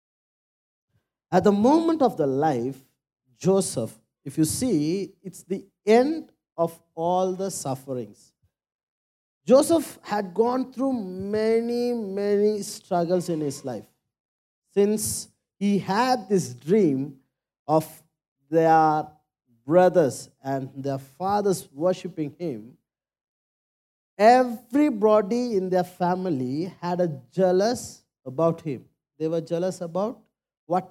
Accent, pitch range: native, 155-220 Hz